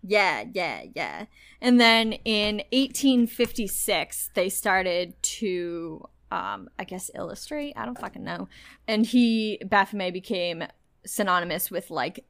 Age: 10-29